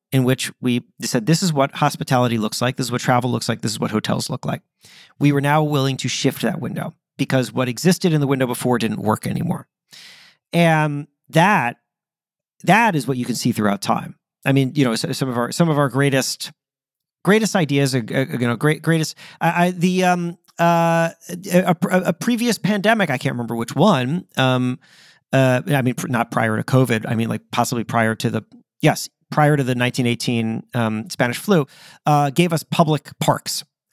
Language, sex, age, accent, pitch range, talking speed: English, male, 40-59, American, 125-165 Hz, 195 wpm